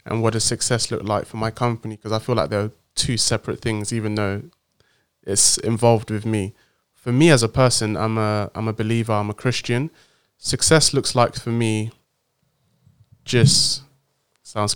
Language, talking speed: English, 175 wpm